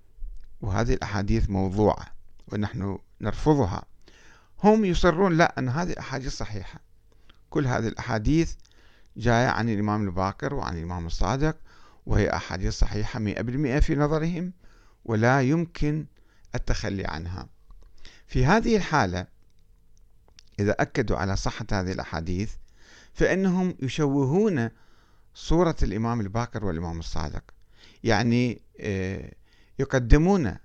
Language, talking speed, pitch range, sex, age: Arabic, 100 wpm, 95-125 Hz, male, 50-69